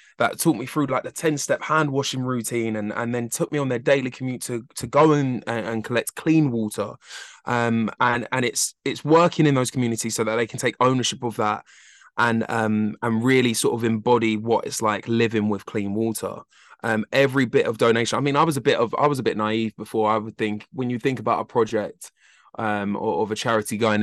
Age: 20-39